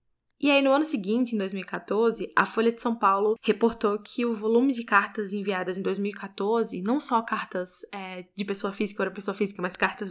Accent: Brazilian